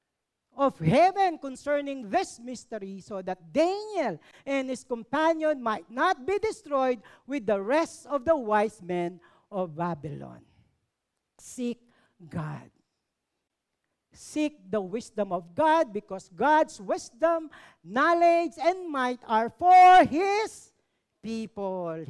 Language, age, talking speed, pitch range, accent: Filipino, 50-69, 110 wpm, 200-310 Hz, native